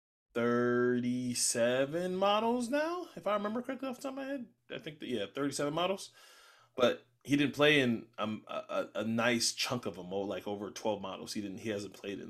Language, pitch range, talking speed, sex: English, 105-125 Hz, 205 wpm, male